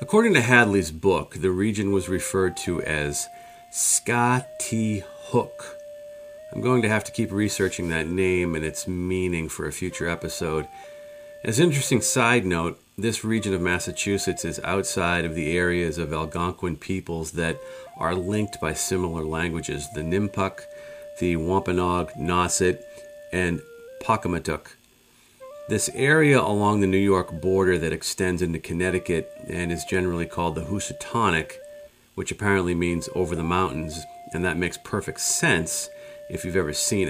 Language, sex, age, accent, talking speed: English, male, 40-59, American, 145 wpm